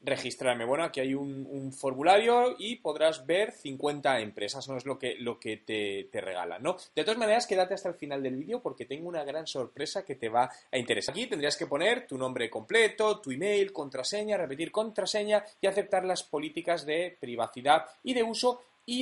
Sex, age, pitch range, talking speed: male, 30-49, 135-215 Hz, 200 wpm